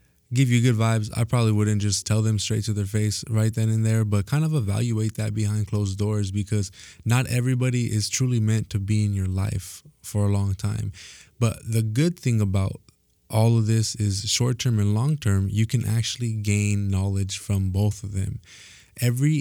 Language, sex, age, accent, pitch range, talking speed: English, male, 20-39, American, 100-115 Hz, 195 wpm